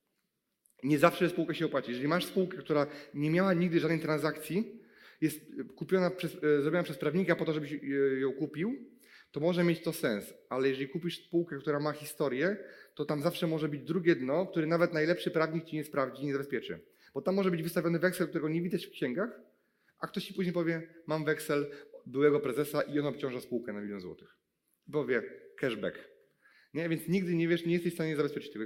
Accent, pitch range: native, 145-175 Hz